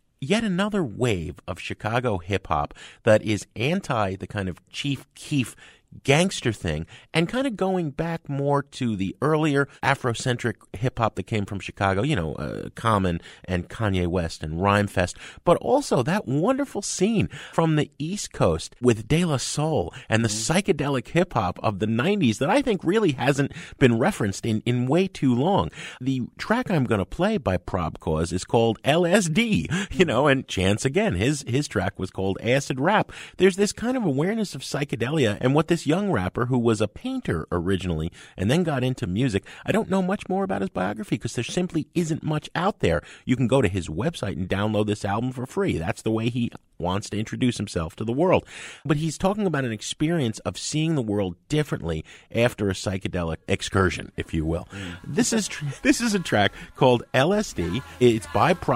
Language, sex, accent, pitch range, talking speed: English, male, American, 100-155 Hz, 190 wpm